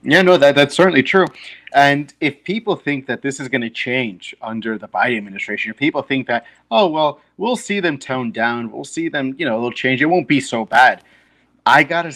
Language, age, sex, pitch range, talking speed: English, 30-49, male, 115-145 Hz, 225 wpm